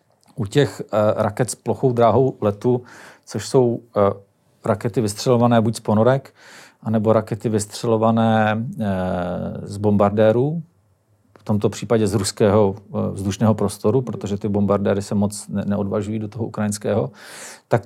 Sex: male